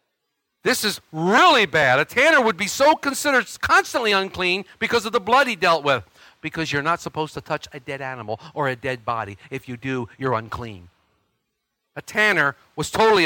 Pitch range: 165-235 Hz